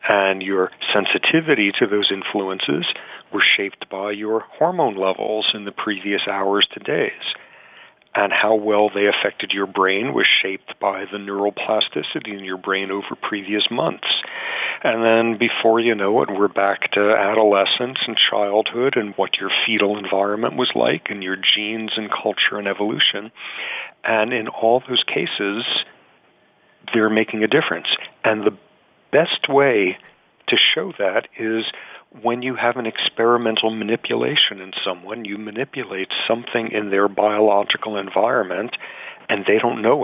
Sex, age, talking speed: male, 50-69, 145 wpm